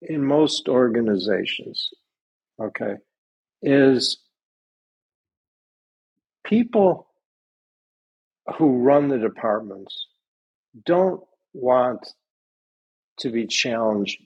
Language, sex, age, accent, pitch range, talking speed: English, male, 50-69, American, 100-140 Hz, 65 wpm